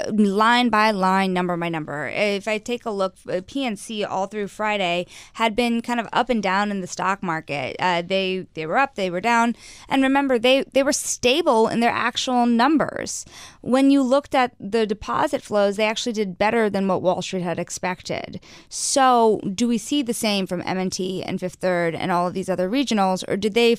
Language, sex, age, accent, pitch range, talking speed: English, female, 20-39, American, 185-230 Hz, 205 wpm